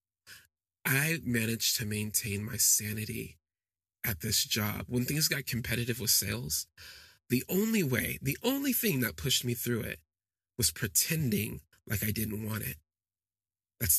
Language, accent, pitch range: English, American, 95-115 Hz